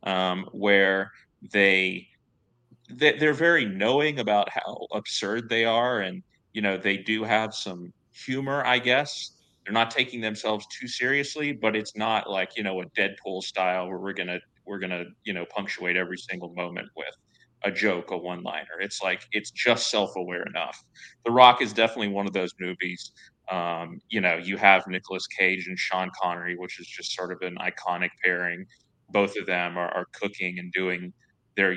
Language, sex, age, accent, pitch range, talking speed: English, male, 30-49, American, 90-110 Hz, 180 wpm